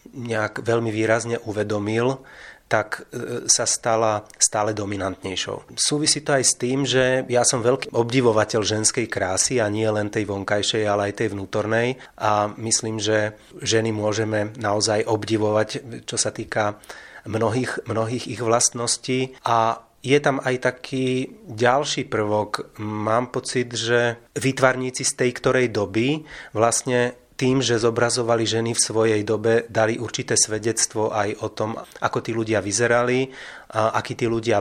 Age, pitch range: 30-49, 105-120 Hz